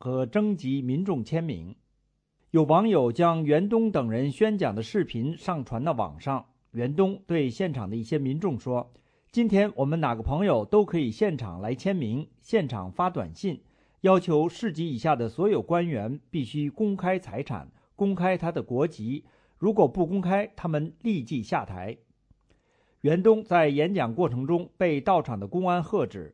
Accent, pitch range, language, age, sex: Chinese, 130-185 Hz, English, 50-69, male